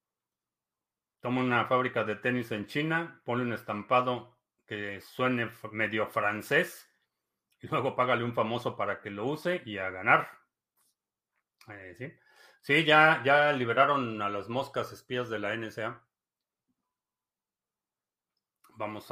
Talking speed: 125 wpm